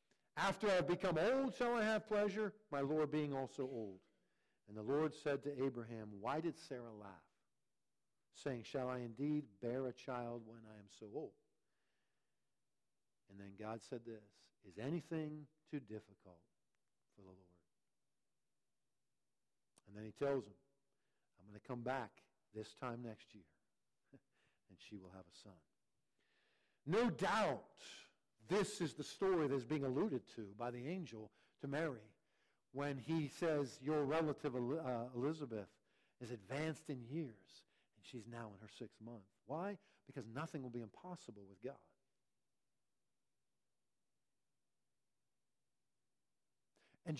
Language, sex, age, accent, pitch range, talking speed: English, male, 50-69, American, 110-175 Hz, 140 wpm